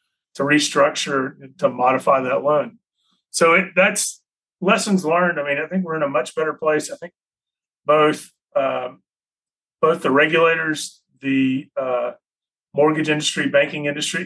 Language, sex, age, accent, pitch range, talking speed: English, male, 40-59, American, 135-165 Hz, 145 wpm